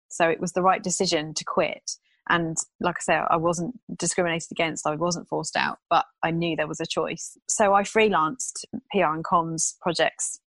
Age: 30-49